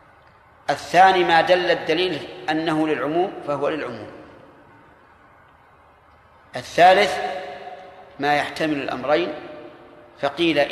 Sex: male